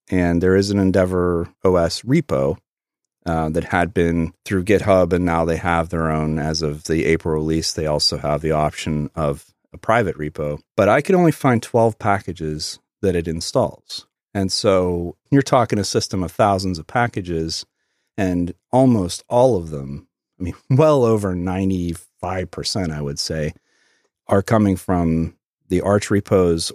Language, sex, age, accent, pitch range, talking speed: English, male, 40-59, American, 80-105 Hz, 160 wpm